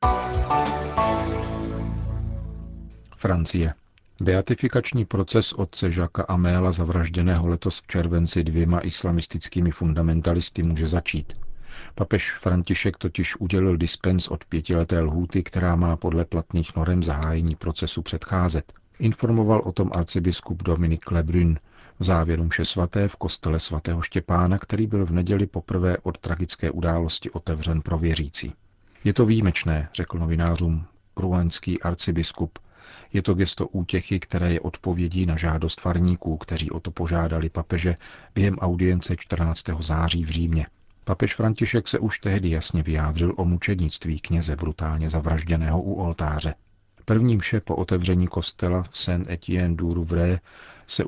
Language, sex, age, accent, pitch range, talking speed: Czech, male, 50-69, native, 85-95 Hz, 125 wpm